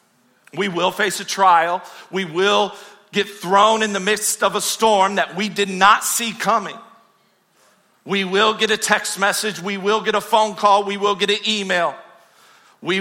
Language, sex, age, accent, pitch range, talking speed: English, male, 40-59, American, 165-215 Hz, 180 wpm